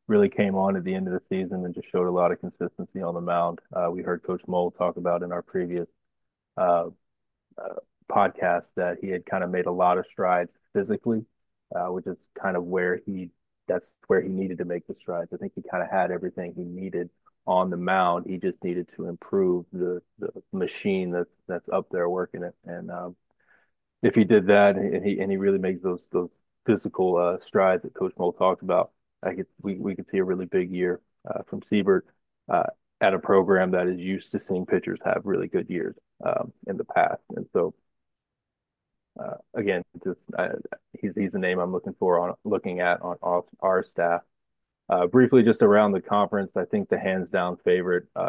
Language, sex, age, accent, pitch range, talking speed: English, male, 30-49, American, 90-100 Hz, 210 wpm